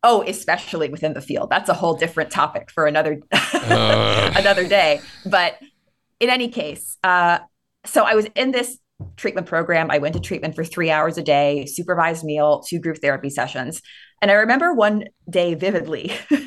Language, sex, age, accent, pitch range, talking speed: English, female, 20-39, American, 155-210 Hz, 170 wpm